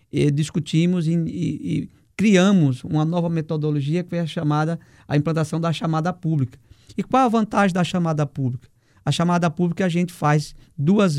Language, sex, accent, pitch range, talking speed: Portuguese, male, Brazilian, 140-180 Hz, 165 wpm